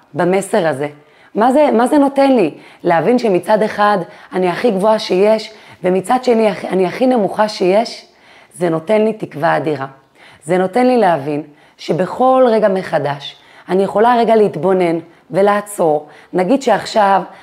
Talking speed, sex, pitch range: 140 wpm, female, 175-230 Hz